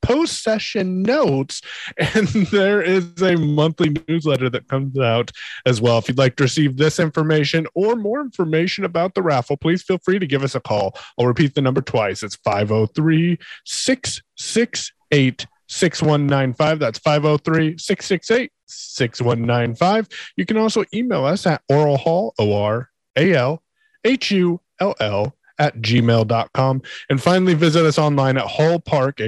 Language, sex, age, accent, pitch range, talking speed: English, male, 30-49, American, 130-180 Hz, 125 wpm